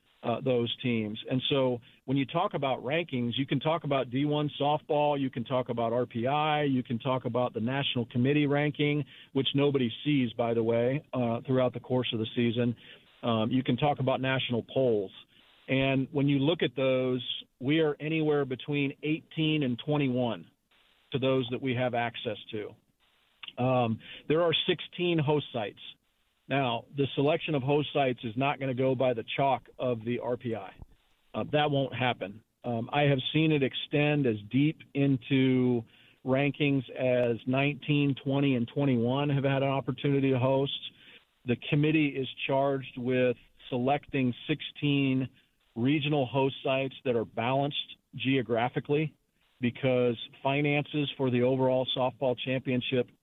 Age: 40-59